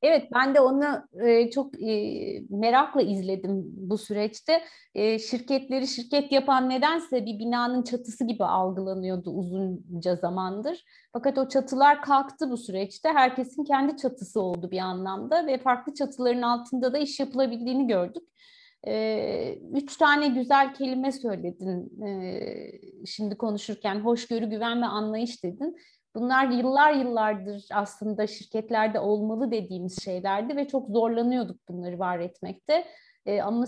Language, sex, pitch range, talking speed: Turkish, female, 200-265 Hz, 120 wpm